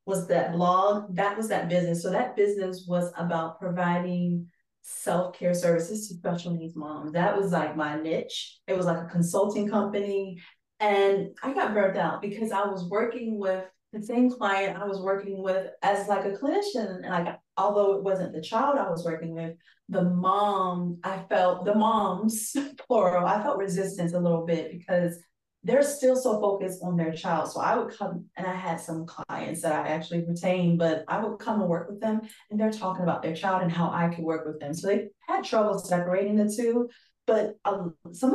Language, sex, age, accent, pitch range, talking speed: English, female, 20-39, American, 170-205 Hz, 200 wpm